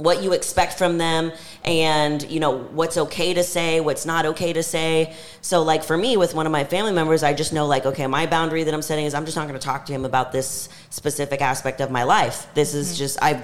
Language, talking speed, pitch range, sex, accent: English, 255 wpm, 150-175 Hz, female, American